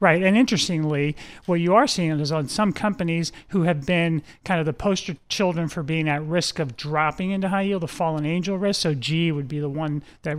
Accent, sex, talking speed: American, male, 225 wpm